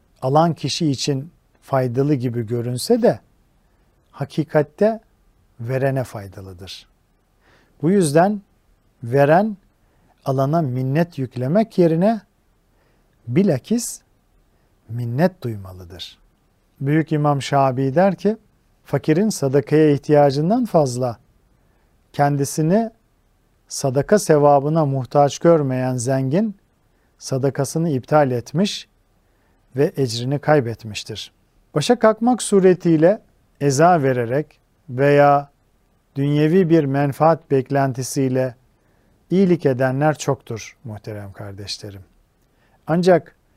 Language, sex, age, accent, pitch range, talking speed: Turkish, male, 50-69, native, 120-165 Hz, 80 wpm